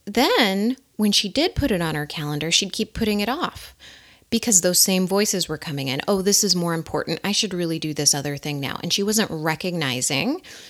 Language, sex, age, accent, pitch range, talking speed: English, female, 30-49, American, 155-215 Hz, 215 wpm